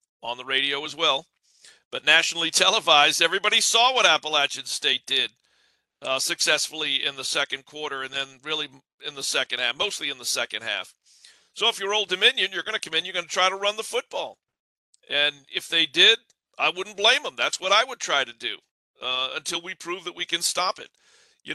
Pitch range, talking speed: 140-170 Hz, 210 wpm